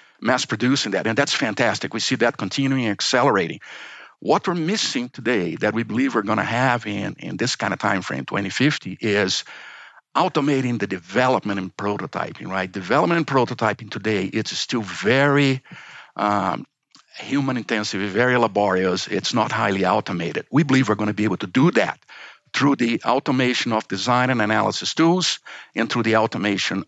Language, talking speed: English, 165 wpm